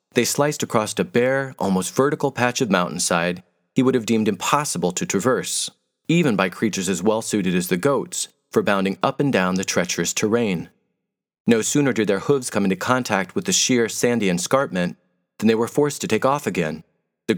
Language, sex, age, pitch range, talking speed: English, male, 40-59, 95-130 Hz, 190 wpm